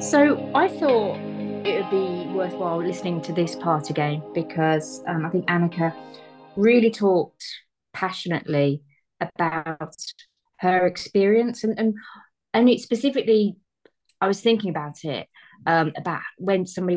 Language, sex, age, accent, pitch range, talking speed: English, female, 30-49, British, 155-180 Hz, 130 wpm